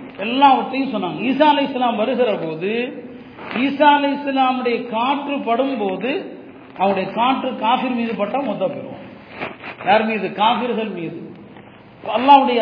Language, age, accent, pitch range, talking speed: Tamil, 40-59, native, 210-265 Hz, 100 wpm